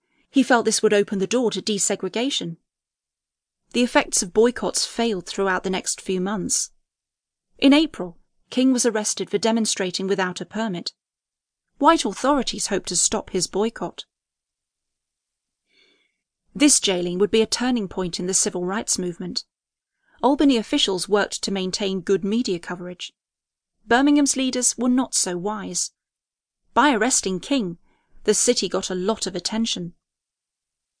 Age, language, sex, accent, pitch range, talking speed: 30-49, English, female, British, 185-245 Hz, 140 wpm